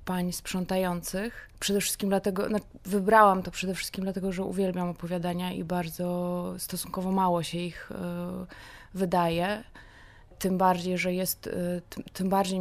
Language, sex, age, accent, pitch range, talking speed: Polish, female, 20-39, native, 175-195 Hz, 145 wpm